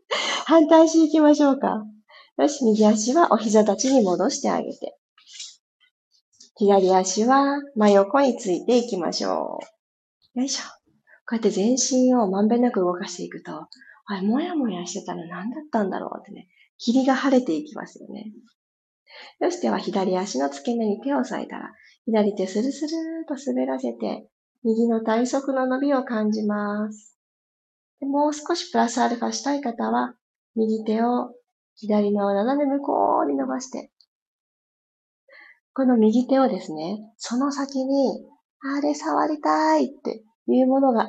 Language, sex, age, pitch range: Japanese, female, 40-59, 210-280 Hz